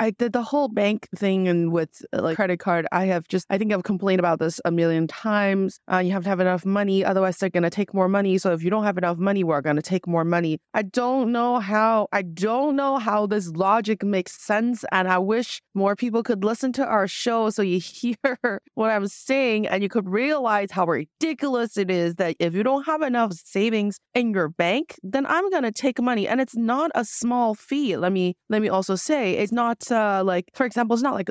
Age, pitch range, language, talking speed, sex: 20-39, 185-250 Hz, English, 235 wpm, female